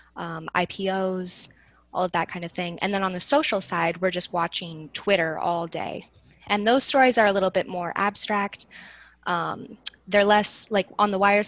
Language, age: English, 10-29